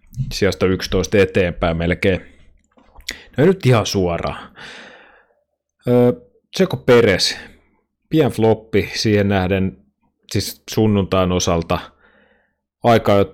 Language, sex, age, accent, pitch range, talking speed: Finnish, male, 30-49, native, 90-105 Hz, 90 wpm